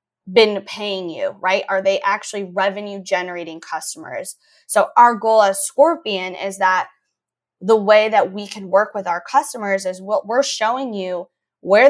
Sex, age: female, 20-39